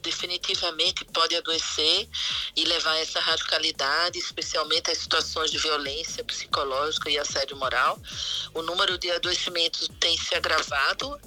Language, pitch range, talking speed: Portuguese, 155-185 Hz, 120 wpm